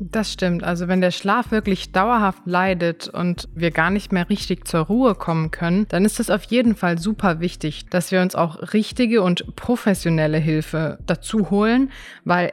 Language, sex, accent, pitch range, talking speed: German, female, German, 170-205 Hz, 180 wpm